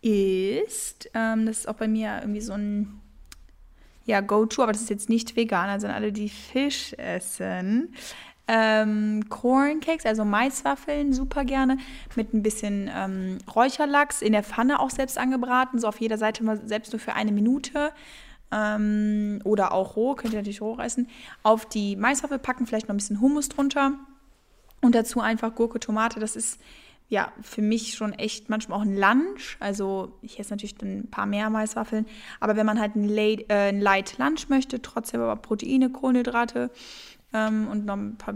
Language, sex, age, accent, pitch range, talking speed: German, female, 10-29, German, 210-245 Hz, 170 wpm